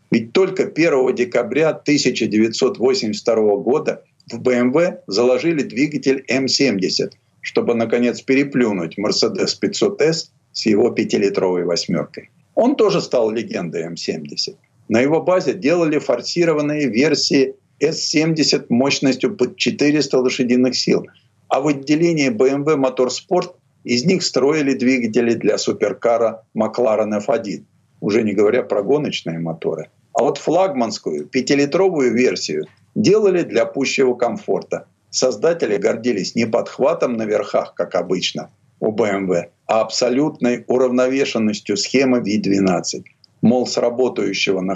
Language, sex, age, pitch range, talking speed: Russian, male, 50-69, 115-150 Hz, 115 wpm